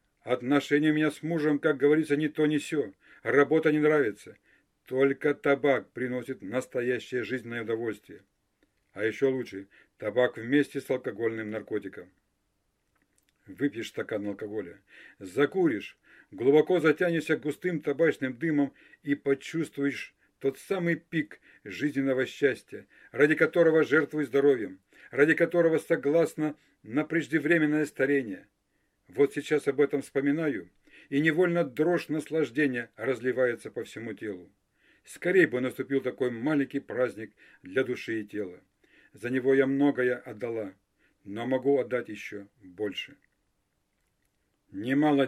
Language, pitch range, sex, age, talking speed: Russian, 125-150 Hz, male, 50-69, 115 wpm